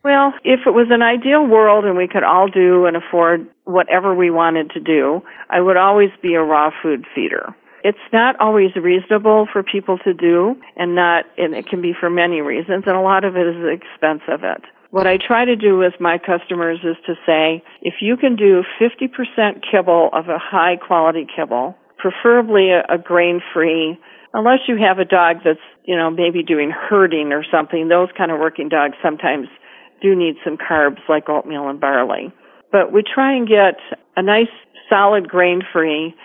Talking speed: 195 wpm